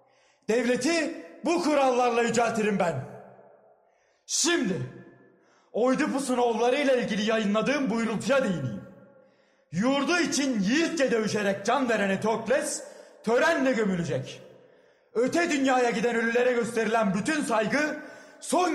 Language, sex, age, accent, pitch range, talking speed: Turkish, male, 40-59, native, 235-300 Hz, 95 wpm